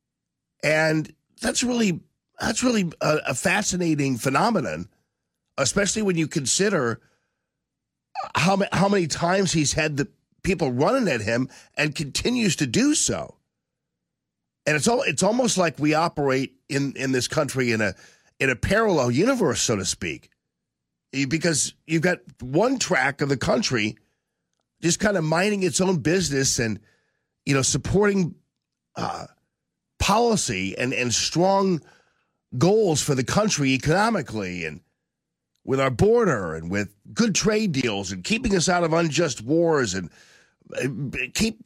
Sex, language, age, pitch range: male, English, 50-69, 135-195 Hz